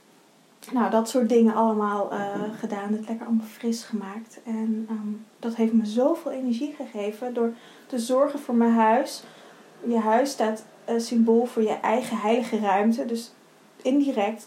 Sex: female